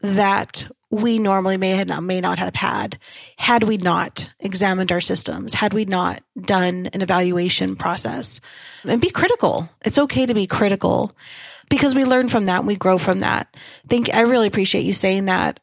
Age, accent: 30-49, American